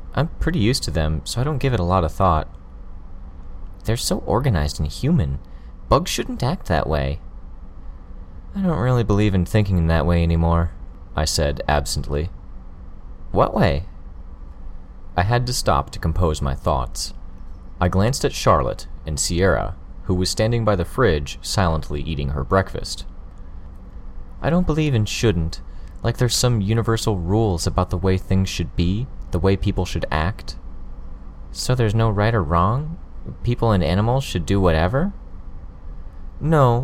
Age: 30-49